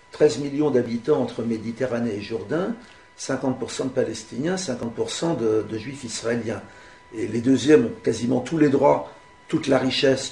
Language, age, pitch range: French, 50-69, 115-145 Hz